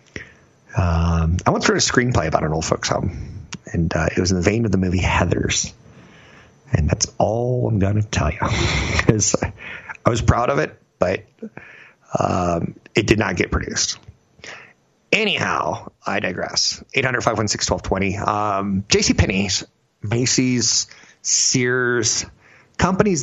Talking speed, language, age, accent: 140 wpm, English, 50-69, American